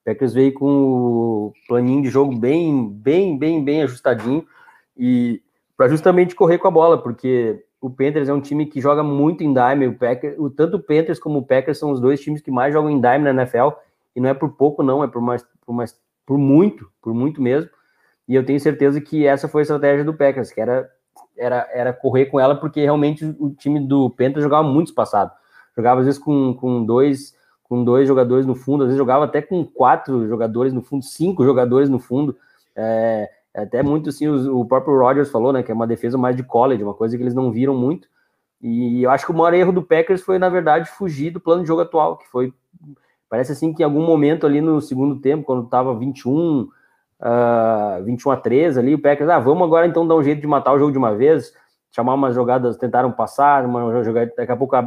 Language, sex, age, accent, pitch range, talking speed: Portuguese, male, 20-39, Brazilian, 125-150 Hz, 225 wpm